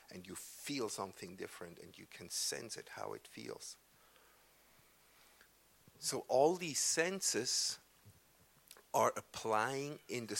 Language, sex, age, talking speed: English, male, 50-69, 120 wpm